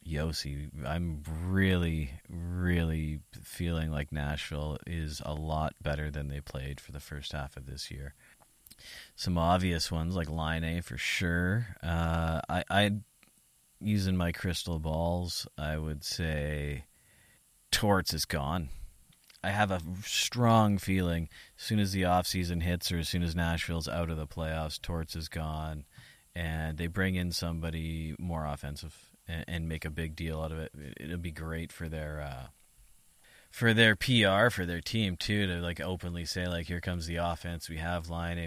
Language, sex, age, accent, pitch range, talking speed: English, male, 30-49, American, 75-90 Hz, 165 wpm